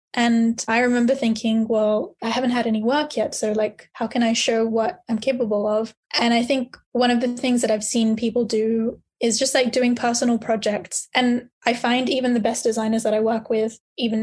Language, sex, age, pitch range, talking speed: English, female, 10-29, 225-250 Hz, 215 wpm